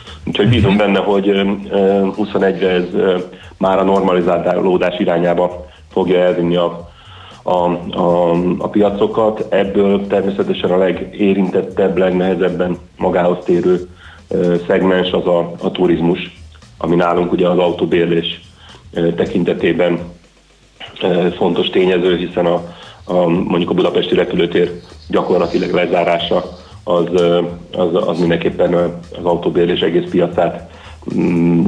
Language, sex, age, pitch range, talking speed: Hungarian, male, 30-49, 85-95 Hz, 100 wpm